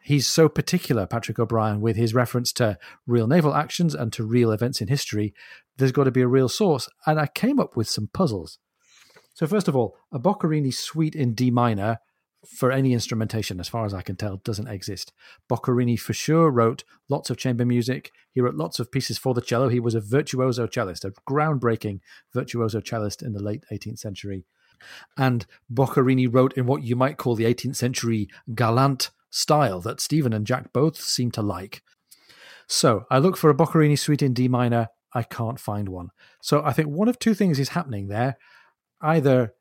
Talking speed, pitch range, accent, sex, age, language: 195 wpm, 115-140 Hz, British, male, 40-59, English